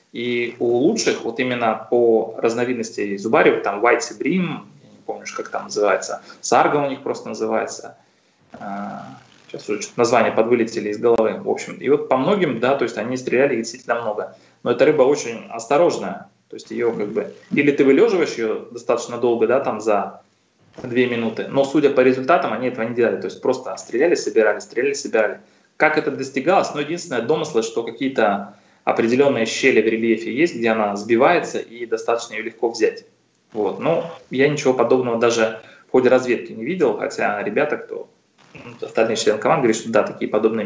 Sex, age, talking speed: male, 20-39, 180 wpm